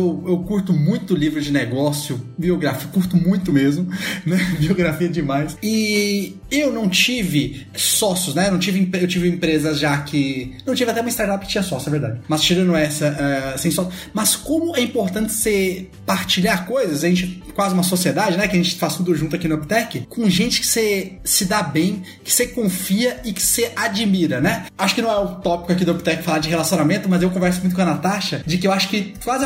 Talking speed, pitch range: 220 wpm, 170-215 Hz